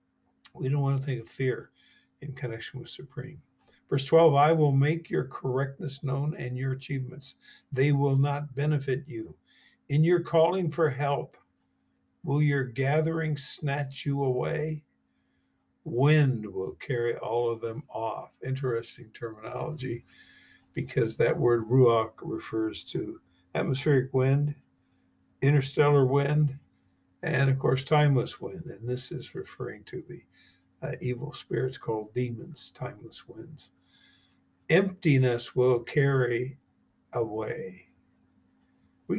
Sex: male